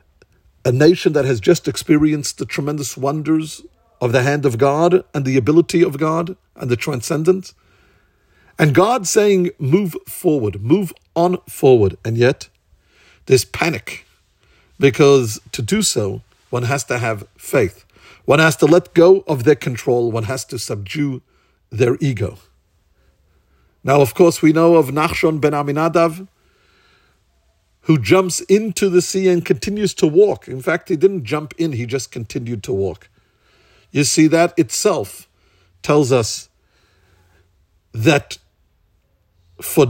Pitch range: 105-170 Hz